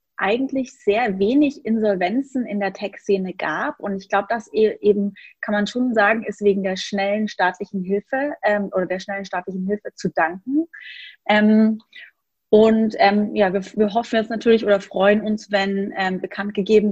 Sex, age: female, 30-49